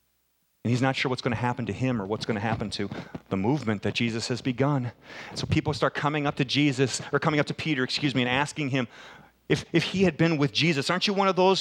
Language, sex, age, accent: English, male, 40-59, American